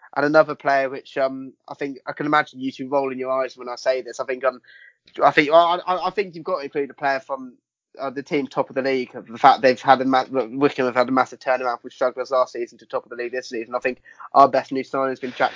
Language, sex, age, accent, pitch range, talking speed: English, male, 20-39, British, 130-140 Hz, 280 wpm